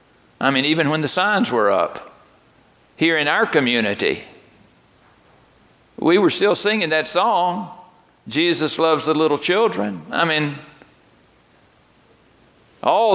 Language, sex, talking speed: English, male, 120 wpm